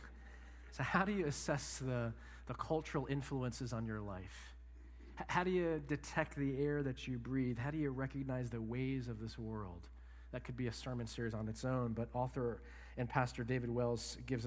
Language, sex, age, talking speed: English, male, 40-59, 190 wpm